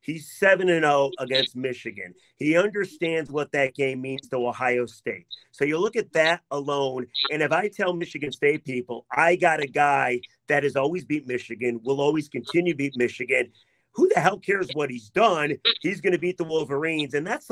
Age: 40-59